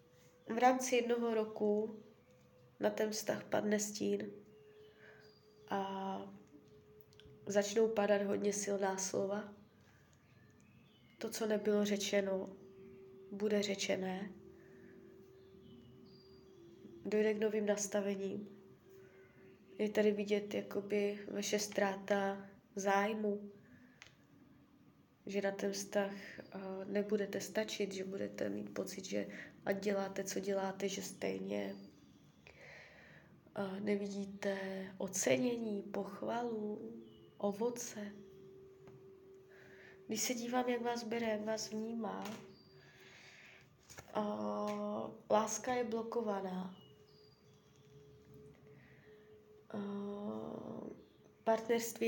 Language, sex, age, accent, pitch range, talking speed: Czech, female, 20-39, native, 190-215 Hz, 75 wpm